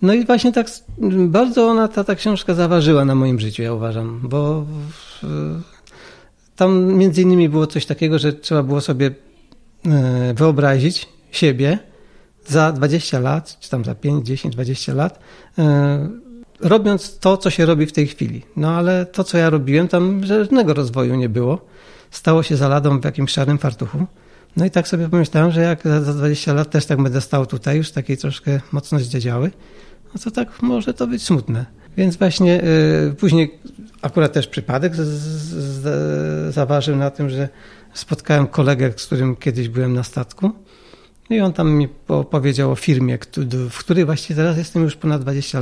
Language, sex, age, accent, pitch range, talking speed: Polish, male, 40-59, native, 135-180 Hz, 165 wpm